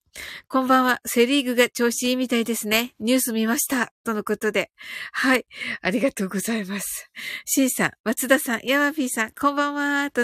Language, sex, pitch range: Japanese, female, 215-280 Hz